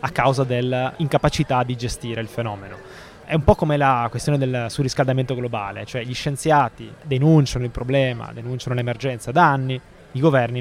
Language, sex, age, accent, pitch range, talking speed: Italian, male, 20-39, native, 120-140 Hz, 160 wpm